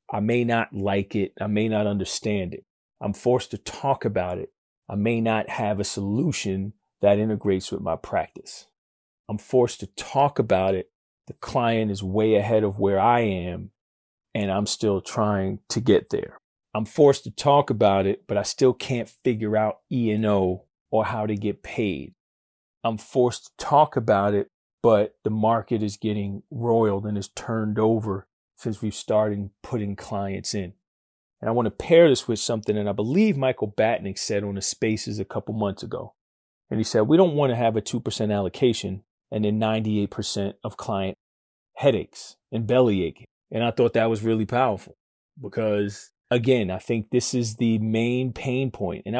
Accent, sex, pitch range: American, male, 100-125 Hz